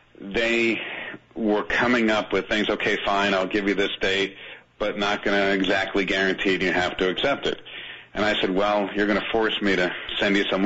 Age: 40-59